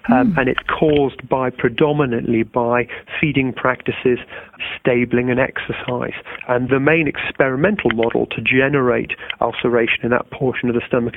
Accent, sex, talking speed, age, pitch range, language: British, male, 140 wpm, 40-59, 120-140 Hz, English